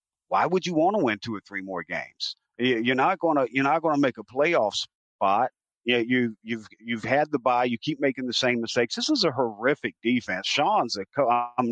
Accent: American